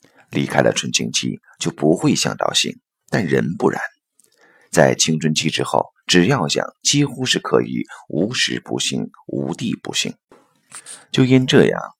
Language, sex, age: Chinese, male, 50-69